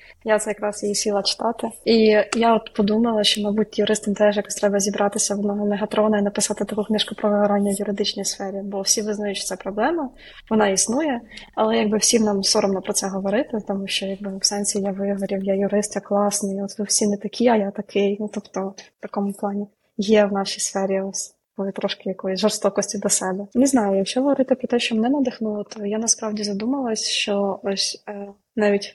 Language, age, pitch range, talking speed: Ukrainian, 20-39, 200-220 Hz, 200 wpm